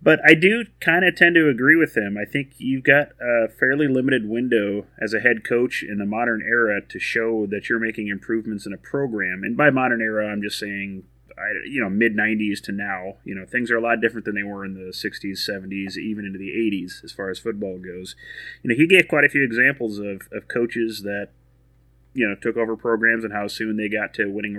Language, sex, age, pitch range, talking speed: English, male, 30-49, 105-125 Hz, 230 wpm